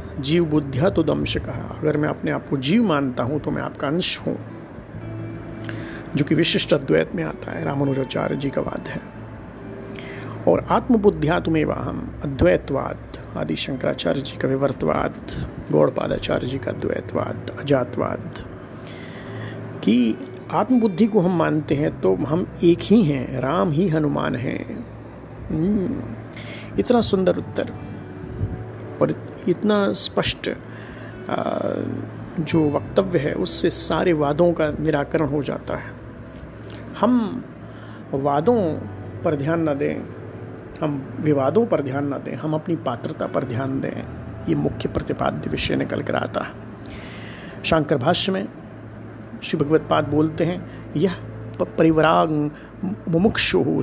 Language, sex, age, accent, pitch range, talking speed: Hindi, male, 50-69, native, 130-170 Hz, 125 wpm